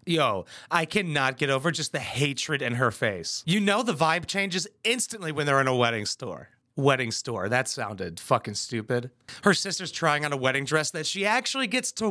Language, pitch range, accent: English, 140-195 Hz, American